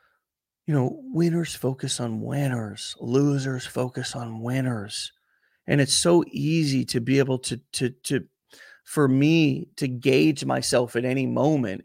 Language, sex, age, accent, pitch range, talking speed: English, male, 30-49, American, 125-160 Hz, 140 wpm